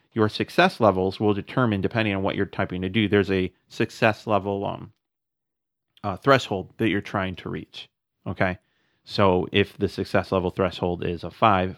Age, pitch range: 30-49, 95-110 Hz